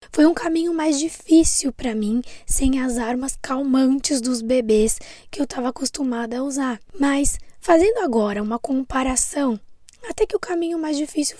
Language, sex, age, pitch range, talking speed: Portuguese, female, 20-39, 240-300 Hz, 160 wpm